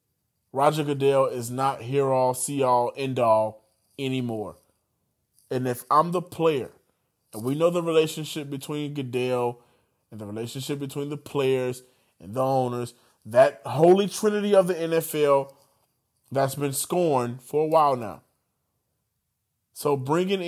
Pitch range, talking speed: 130-170 Hz, 130 wpm